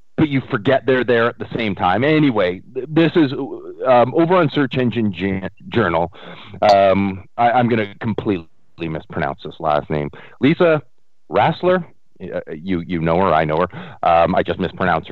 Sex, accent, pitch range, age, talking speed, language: male, American, 105-150 Hz, 40-59, 165 wpm, English